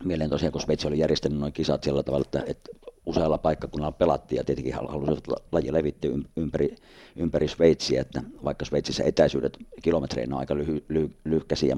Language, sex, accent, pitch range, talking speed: Finnish, male, native, 70-80 Hz, 160 wpm